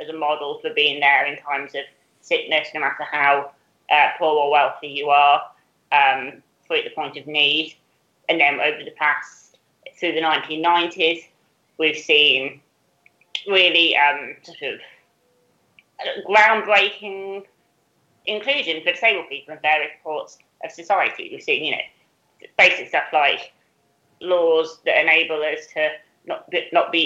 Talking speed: 140 wpm